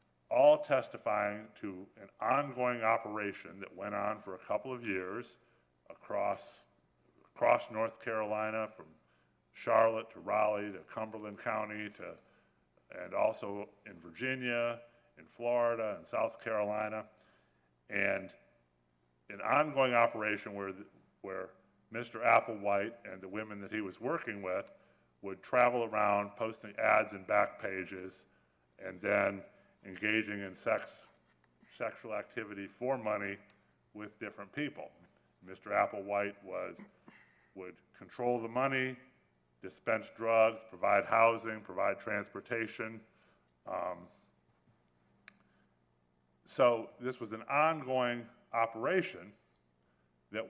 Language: English